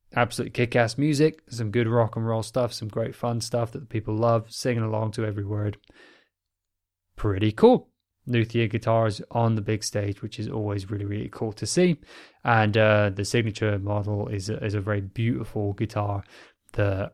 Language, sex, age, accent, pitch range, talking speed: English, male, 20-39, British, 100-120 Hz, 180 wpm